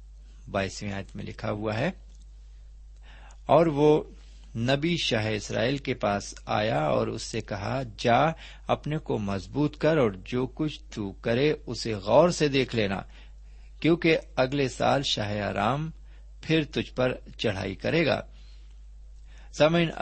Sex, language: male, Urdu